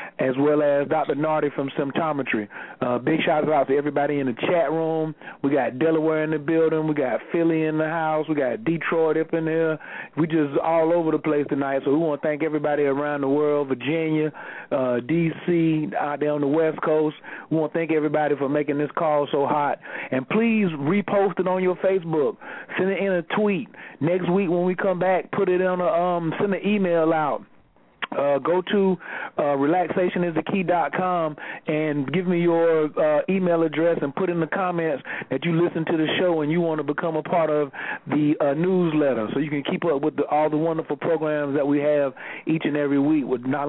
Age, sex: 40-59, male